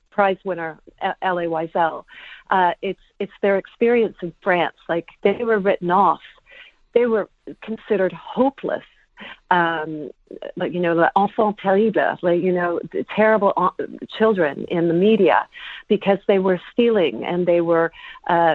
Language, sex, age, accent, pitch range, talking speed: English, female, 50-69, American, 175-215 Hz, 135 wpm